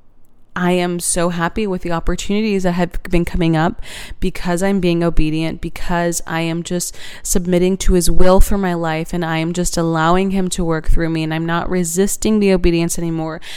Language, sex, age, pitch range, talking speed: English, female, 20-39, 165-190 Hz, 195 wpm